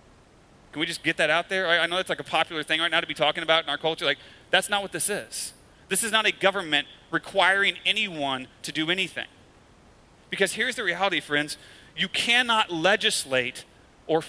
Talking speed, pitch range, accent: 200 wpm, 145-195 Hz, American